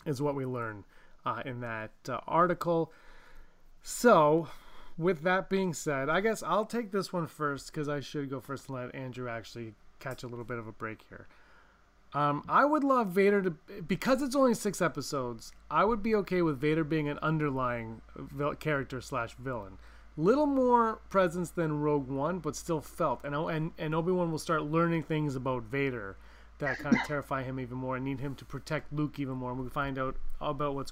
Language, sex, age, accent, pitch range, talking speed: English, male, 30-49, American, 140-195 Hz, 195 wpm